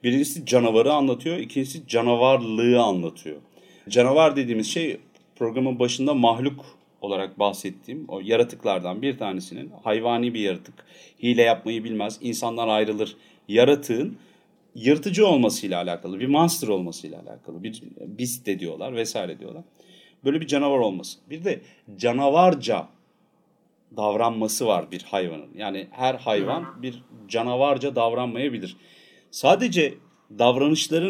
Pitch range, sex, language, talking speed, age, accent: 110-140 Hz, male, Turkish, 110 wpm, 40-59, native